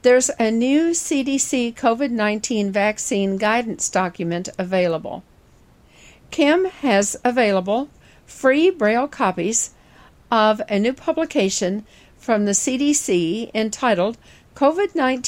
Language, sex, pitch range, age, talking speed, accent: English, female, 205-270 Hz, 50-69, 95 wpm, American